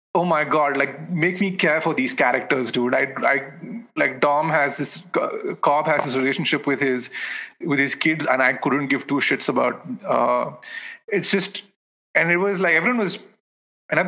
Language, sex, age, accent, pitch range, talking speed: English, male, 30-49, Indian, 130-185 Hz, 190 wpm